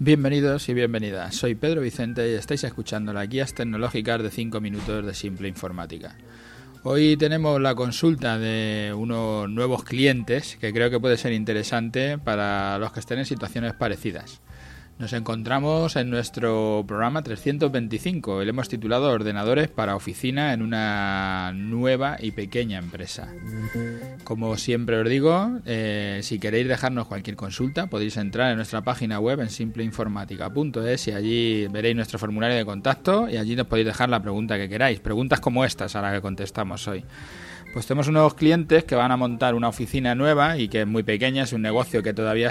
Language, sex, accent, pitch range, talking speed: Spanish, male, Spanish, 110-130 Hz, 170 wpm